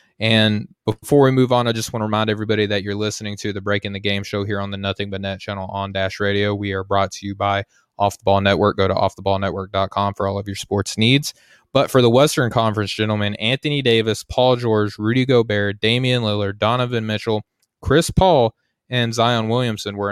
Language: English